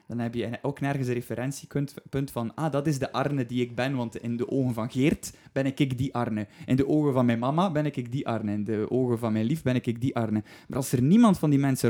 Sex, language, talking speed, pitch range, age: male, Dutch, 265 wpm, 120-145 Hz, 20-39